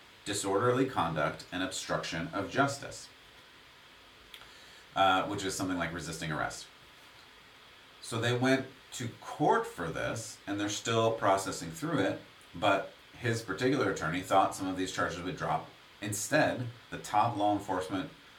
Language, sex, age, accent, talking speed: English, male, 40-59, American, 135 wpm